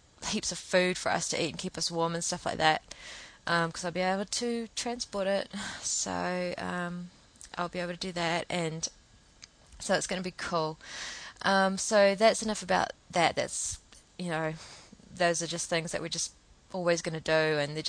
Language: English